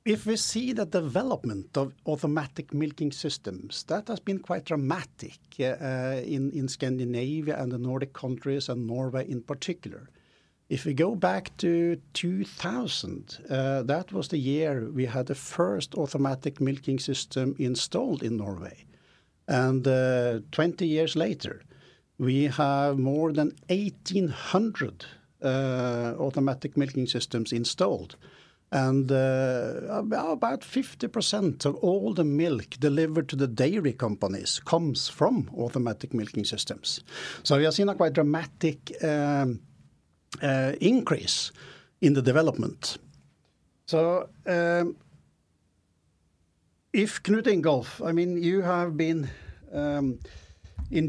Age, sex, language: 60-79, male, English